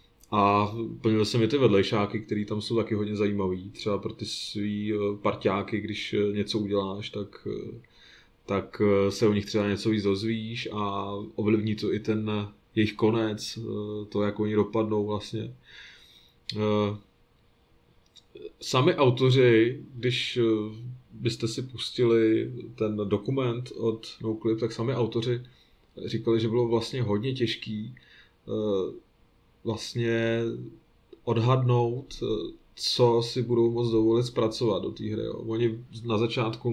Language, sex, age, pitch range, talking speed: Czech, male, 20-39, 105-120 Hz, 120 wpm